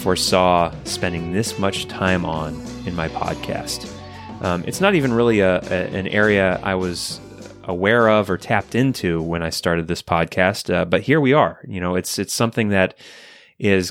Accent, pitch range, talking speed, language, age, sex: American, 95-125 Hz, 180 wpm, English, 20-39, male